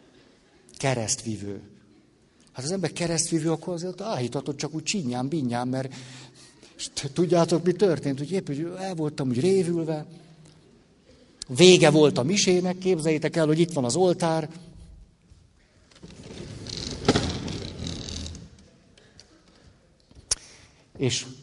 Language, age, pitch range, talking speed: Hungarian, 60-79, 125-175 Hz, 100 wpm